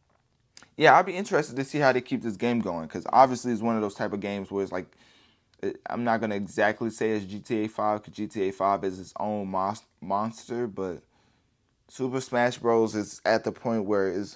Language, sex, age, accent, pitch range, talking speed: English, male, 20-39, American, 95-115 Hz, 210 wpm